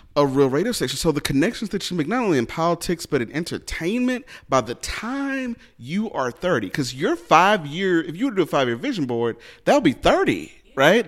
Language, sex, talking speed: English, male, 220 wpm